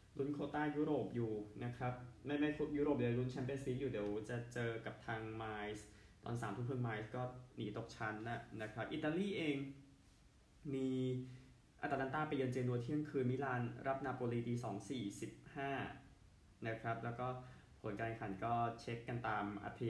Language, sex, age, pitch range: Thai, male, 20-39, 110-130 Hz